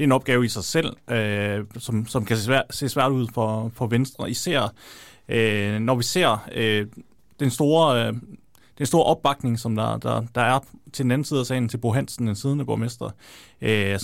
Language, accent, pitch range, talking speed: Danish, native, 115-140 Hz, 215 wpm